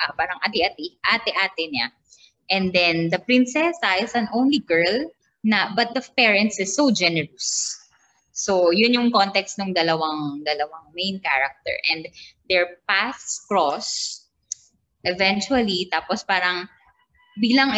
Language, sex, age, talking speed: Filipino, female, 20-39, 125 wpm